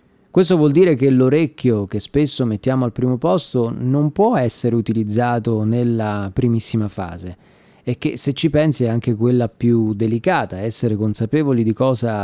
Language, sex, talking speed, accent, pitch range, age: Italian, male, 155 wpm, native, 110-140 Hz, 30-49